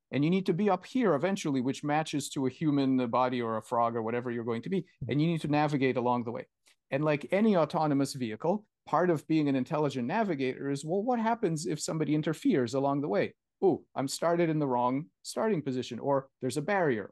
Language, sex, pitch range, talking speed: Hebrew, male, 125-150 Hz, 230 wpm